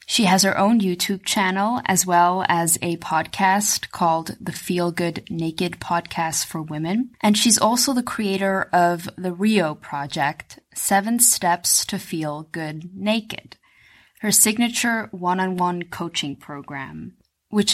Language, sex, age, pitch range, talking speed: English, female, 20-39, 165-195 Hz, 135 wpm